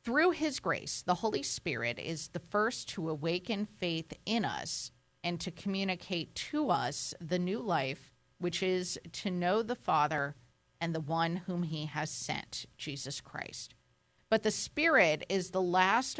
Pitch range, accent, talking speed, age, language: 155-195 Hz, American, 160 wpm, 40-59, English